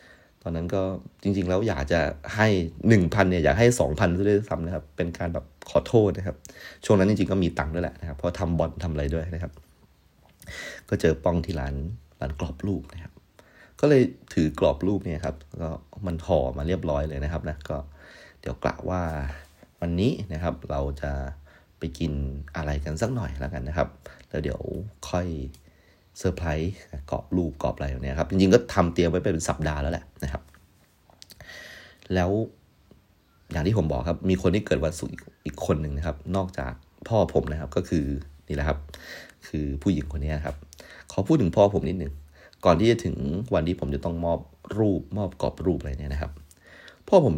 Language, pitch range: Thai, 75-95 Hz